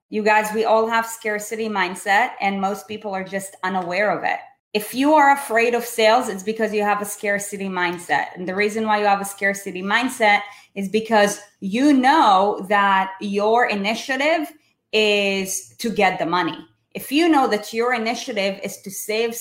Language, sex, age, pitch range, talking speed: English, female, 20-39, 195-235 Hz, 180 wpm